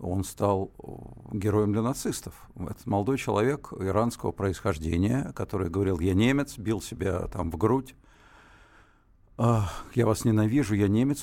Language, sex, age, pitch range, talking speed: Russian, male, 50-69, 105-130 Hz, 125 wpm